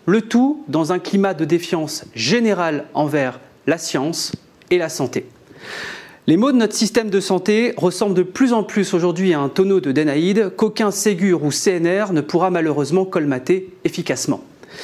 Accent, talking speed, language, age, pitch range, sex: French, 165 wpm, French, 30-49, 170-215 Hz, male